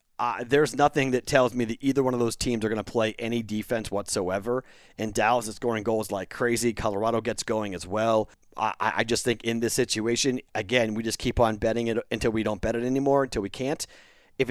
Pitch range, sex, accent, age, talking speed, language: 115-145 Hz, male, American, 30-49, 230 wpm, English